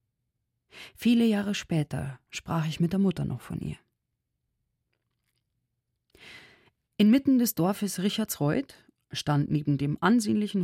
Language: German